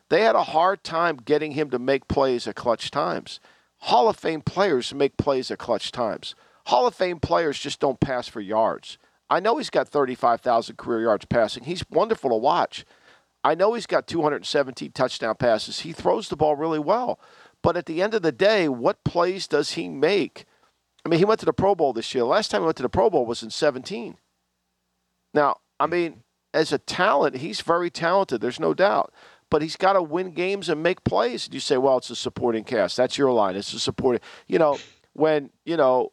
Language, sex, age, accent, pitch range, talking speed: English, male, 50-69, American, 120-165 Hz, 215 wpm